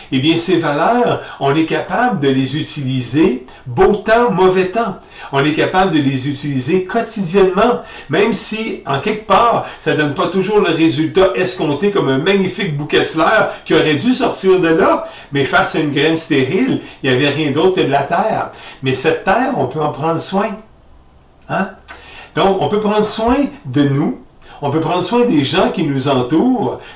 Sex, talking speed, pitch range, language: male, 190 wpm, 145-205 Hz, French